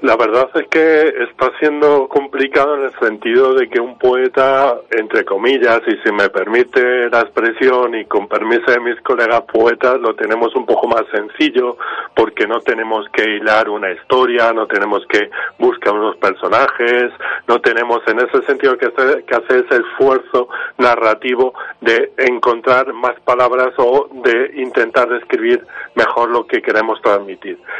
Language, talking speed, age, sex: Spanish, 155 wpm, 40-59, male